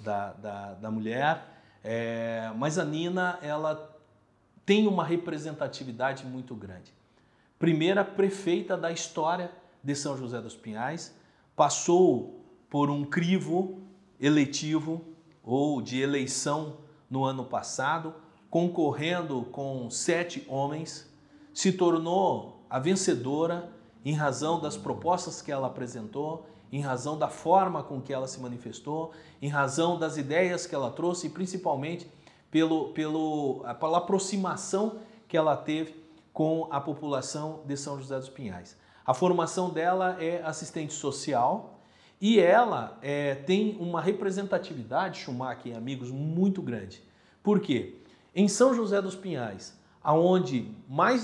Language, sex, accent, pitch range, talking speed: Portuguese, male, Brazilian, 135-180 Hz, 120 wpm